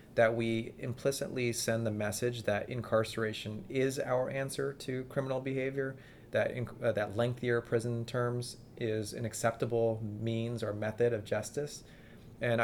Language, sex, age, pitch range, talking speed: English, male, 30-49, 110-120 Hz, 140 wpm